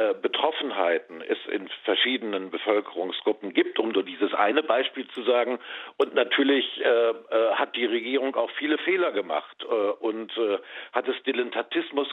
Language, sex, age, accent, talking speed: German, male, 50-69, German, 145 wpm